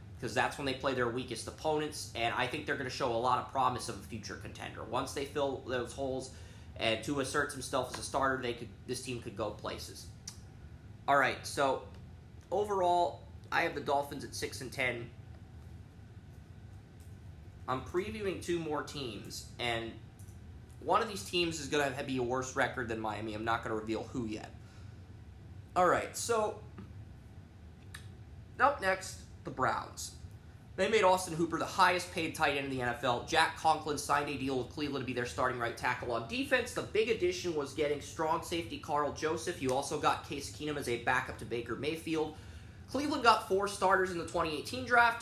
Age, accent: 20-39, American